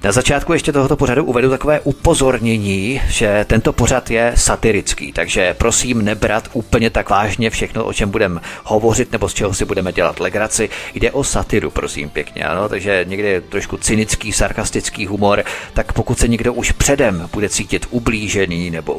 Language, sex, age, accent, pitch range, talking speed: Czech, male, 40-59, native, 100-120 Hz, 170 wpm